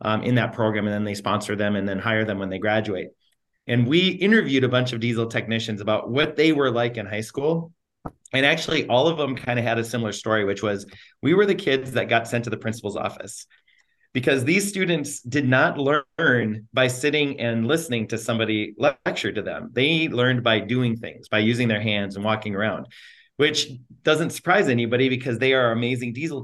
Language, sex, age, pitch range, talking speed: English, male, 30-49, 110-135 Hz, 210 wpm